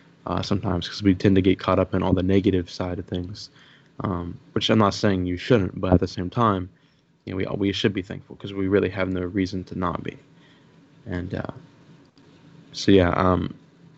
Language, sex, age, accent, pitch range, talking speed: English, male, 20-39, American, 95-110 Hz, 210 wpm